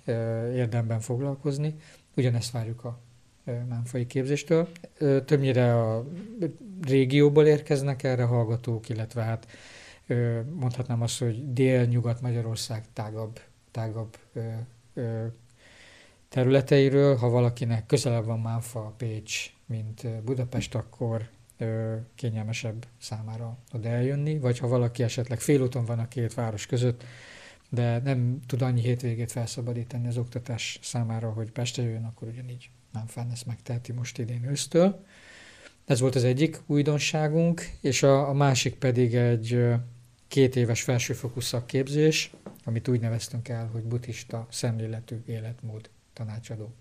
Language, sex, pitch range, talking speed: Hungarian, male, 115-130 Hz, 115 wpm